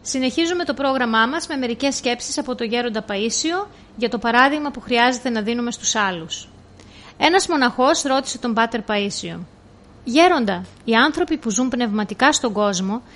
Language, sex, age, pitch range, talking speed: Greek, female, 30-49, 215-275 Hz, 155 wpm